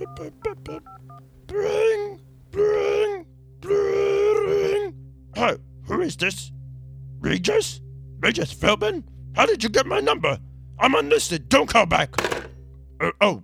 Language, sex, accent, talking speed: English, male, American, 105 wpm